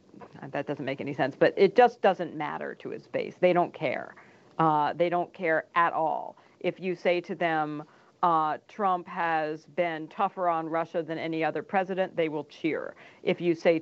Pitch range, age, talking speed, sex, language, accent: 155-180 Hz, 50-69, 190 wpm, female, English, American